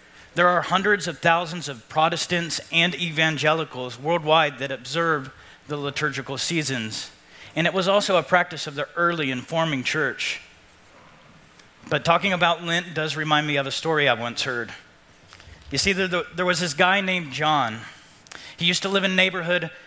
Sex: male